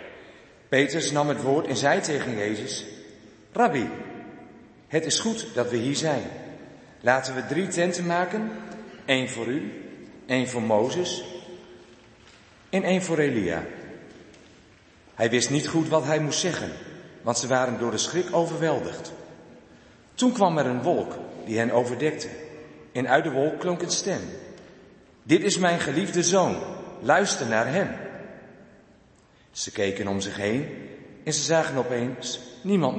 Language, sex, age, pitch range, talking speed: Dutch, male, 50-69, 115-165 Hz, 145 wpm